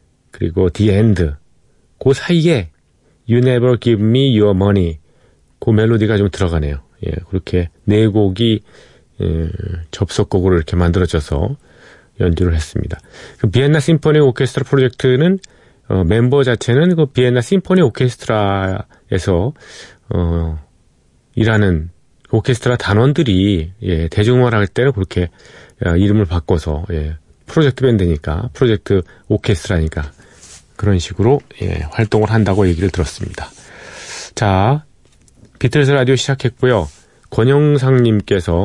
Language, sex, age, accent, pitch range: Korean, male, 40-59, native, 90-125 Hz